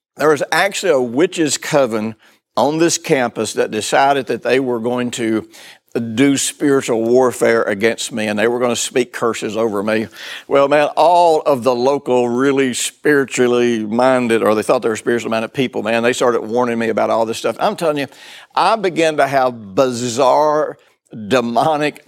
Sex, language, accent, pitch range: male, English, American, 120-150 Hz